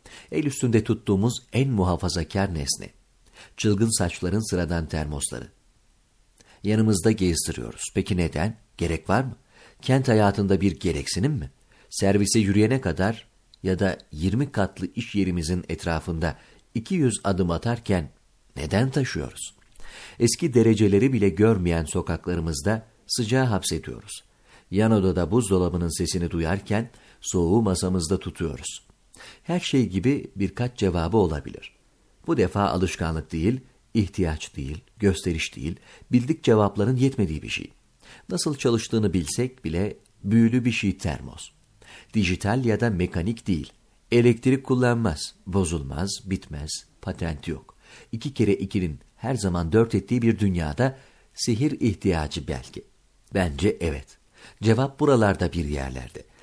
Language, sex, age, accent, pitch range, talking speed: Turkish, male, 50-69, native, 85-115 Hz, 115 wpm